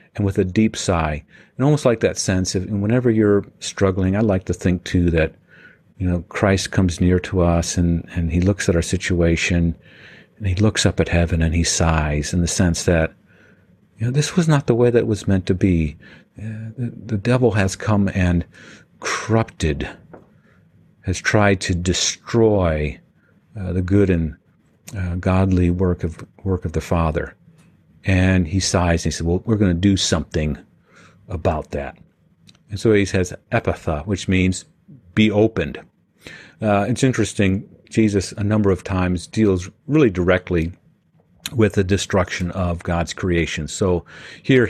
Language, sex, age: English, male, 50-69